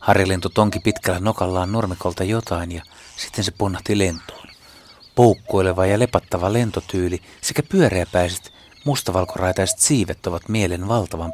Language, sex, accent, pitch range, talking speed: Finnish, male, native, 90-120 Hz, 115 wpm